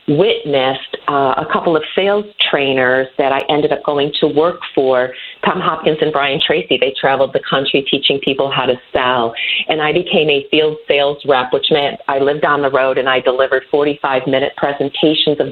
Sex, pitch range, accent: female, 135-175 Hz, American